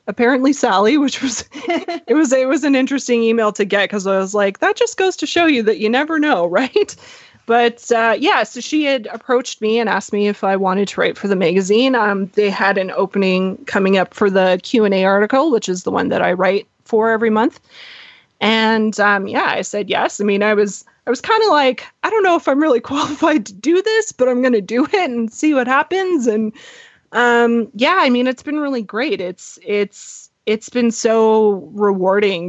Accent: American